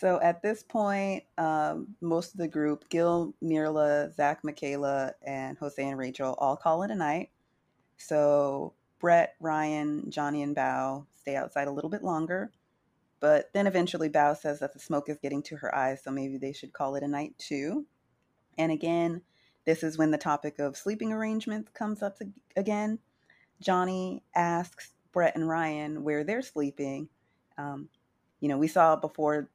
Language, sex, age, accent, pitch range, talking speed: English, female, 30-49, American, 140-170 Hz, 170 wpm